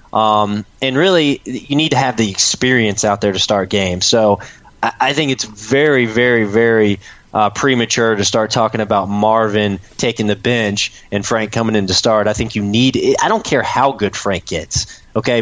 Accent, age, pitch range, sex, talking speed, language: American, 20-39, 105-120 Hz, male, 195 wpm, English